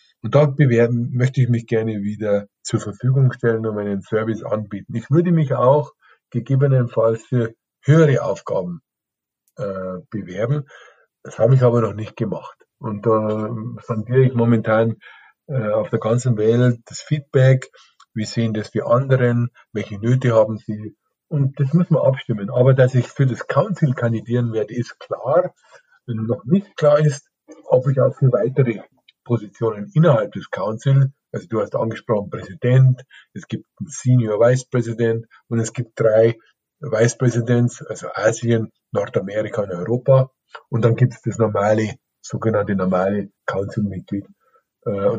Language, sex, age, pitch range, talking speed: German, male, 50-69, 110-135 Hz, 150 wpm